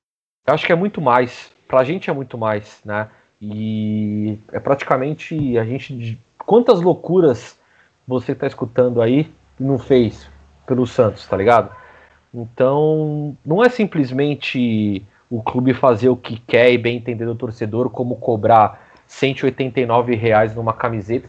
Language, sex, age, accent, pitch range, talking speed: Portuguese, male, 30-49, Brazilian, 120-170 Hz, 145 wpm